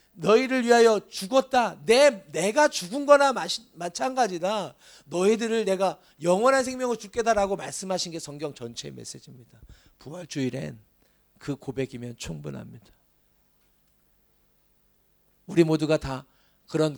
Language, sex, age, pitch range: Korean, male, 40-59, 130-195 Hz